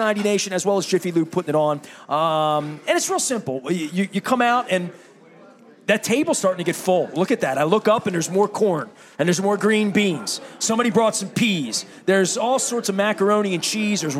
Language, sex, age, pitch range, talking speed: English, male, 30-49, 170-220 Hz, 235 wpm